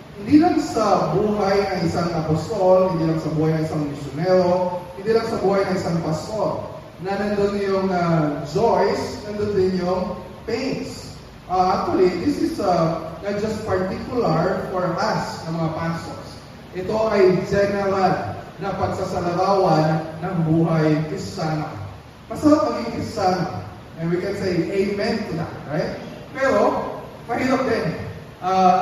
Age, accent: 20-39, native